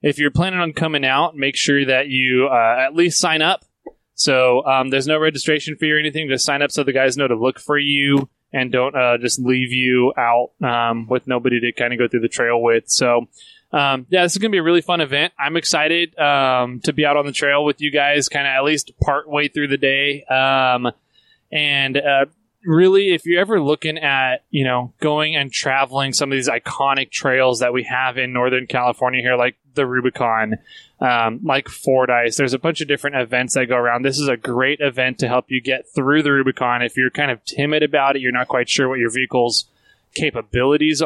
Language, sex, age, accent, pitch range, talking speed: English, male, 20-39, American, 130-150 Hz, 225 wpm